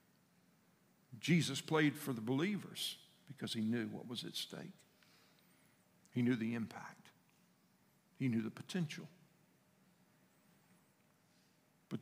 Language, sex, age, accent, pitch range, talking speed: English, male, 50-69, American, 120-170 Hz, 105 wpm